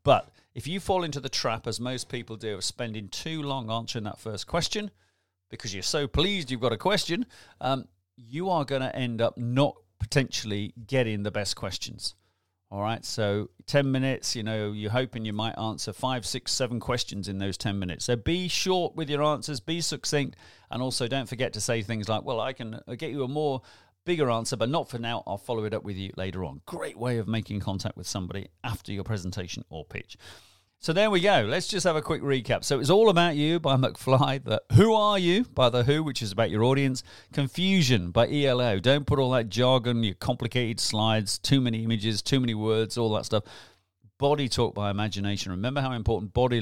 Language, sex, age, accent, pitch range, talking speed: English, male, 40-59, British, 105-135 Hz, 210 wpm